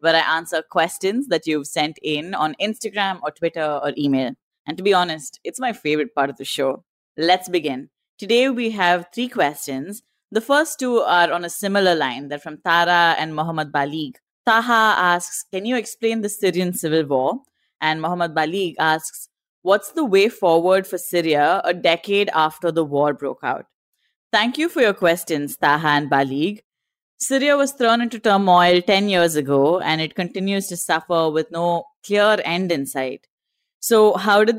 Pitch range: 155-205 Hz